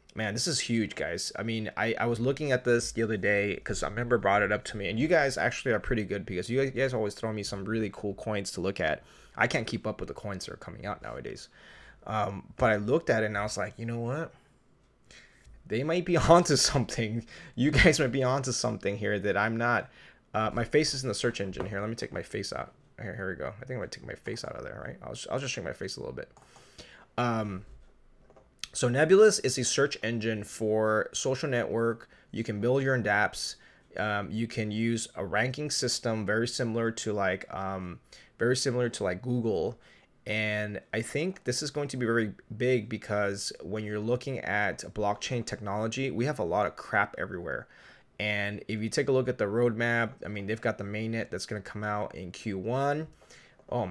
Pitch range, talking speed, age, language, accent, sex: 105-125 Hz, 230 wpm, 20-39, English, American, male